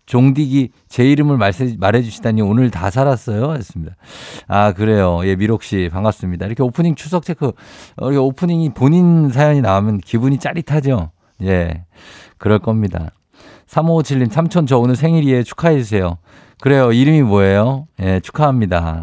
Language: Korean